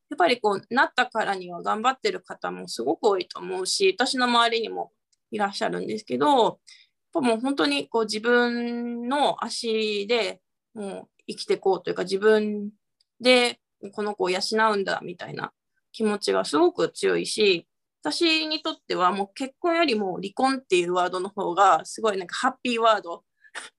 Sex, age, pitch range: female, 20-39, 195-295 Hz